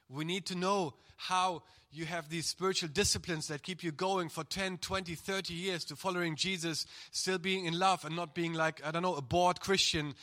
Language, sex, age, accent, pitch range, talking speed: English, male, 30-49, German, 160-200 Hz, 210 wpm